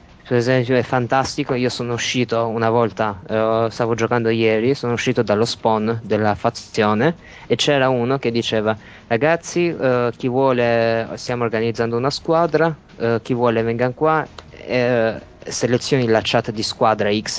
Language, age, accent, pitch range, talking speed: Italian, 20-39, native, 110-125 Hz, 150 wpm